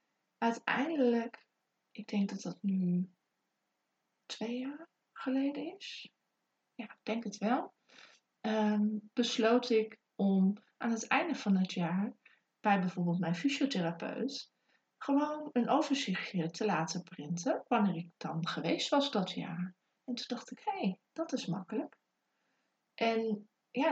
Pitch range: 185-230 Hz